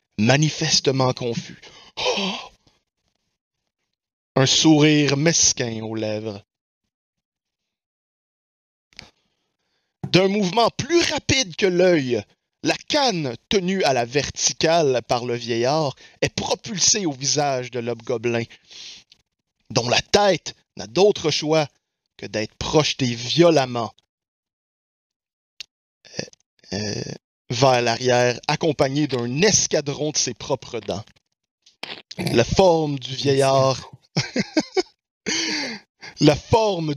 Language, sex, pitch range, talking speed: French, male, 120-165 Hz, 90 wpm